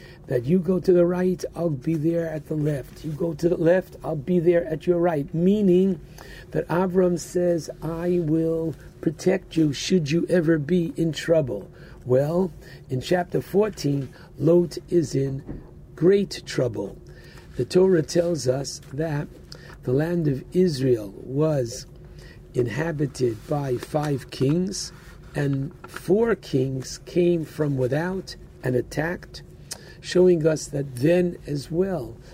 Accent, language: American, English